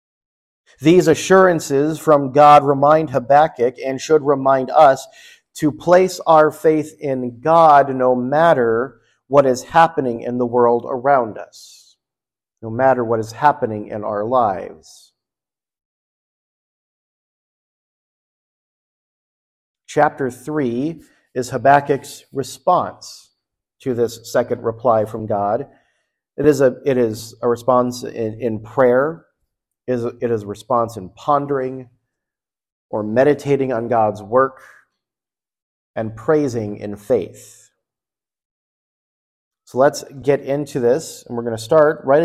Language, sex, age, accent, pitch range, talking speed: English, male, 50-69, American, 120-150 Hz, 115 wpm